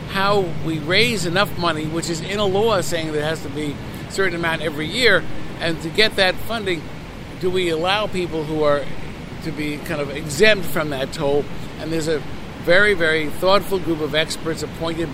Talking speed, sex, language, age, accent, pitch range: 195 wpm, male, English, 60-79, American, 145-180 Hz